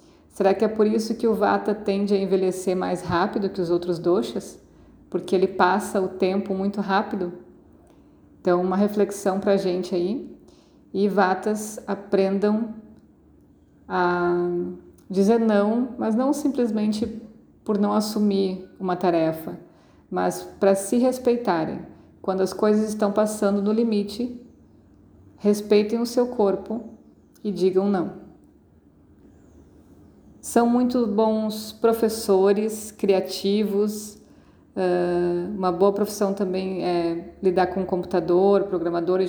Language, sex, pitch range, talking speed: Portuguese, female, 180-210 Hz, 115 wpm